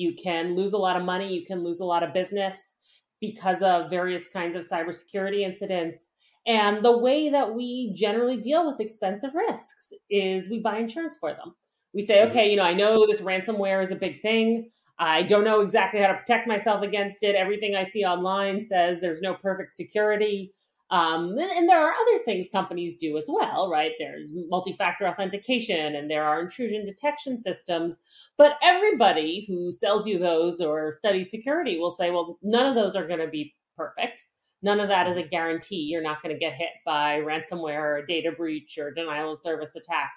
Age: 30-49